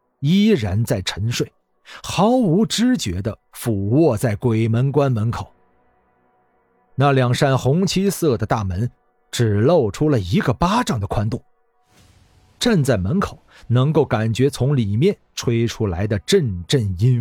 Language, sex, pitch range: Chinese, male, 100-140 Hz